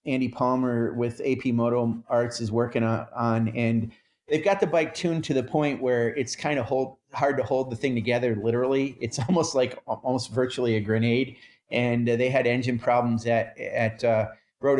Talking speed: 185 wpm